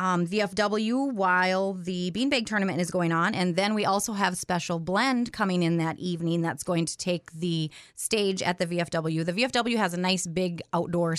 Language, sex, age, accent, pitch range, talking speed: English, female, 30-49, American, 175-215 Hz, 195 wpm